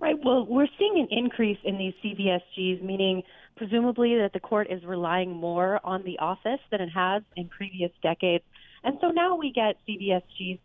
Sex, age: female, 30-49